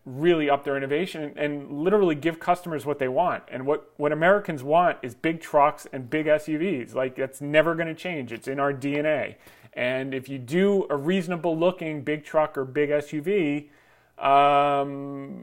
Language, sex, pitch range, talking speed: English, male, 130-155 Hz, 175 wpm